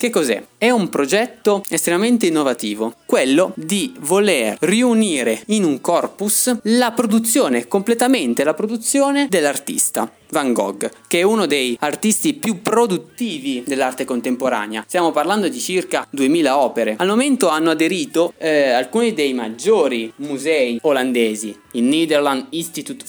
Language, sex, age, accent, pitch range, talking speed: Italian, male, 20-39, native, 130-215 Hz, 130 wpm